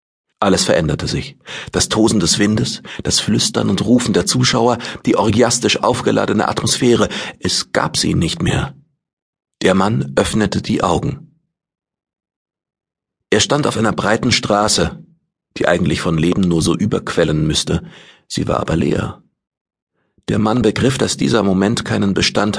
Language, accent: German, German